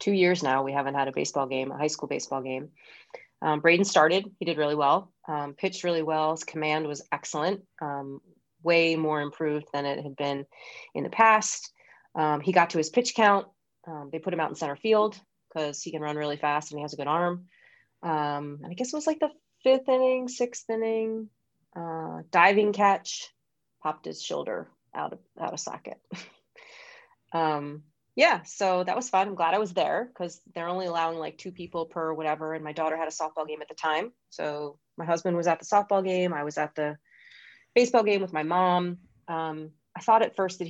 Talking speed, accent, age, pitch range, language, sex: 210 wpm, American, 30-49, 150-195 Hz, English, female